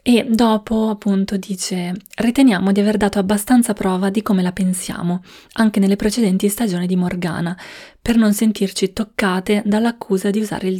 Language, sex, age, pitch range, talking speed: Italian, female, 20-39, 185-215 Hz, 155 wpm